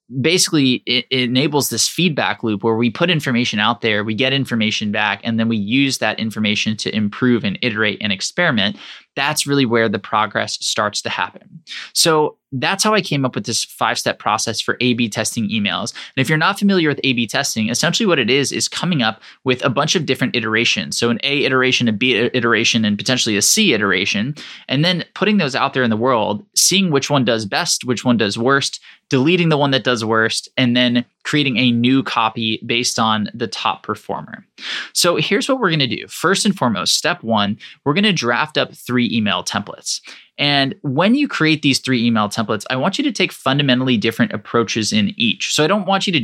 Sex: male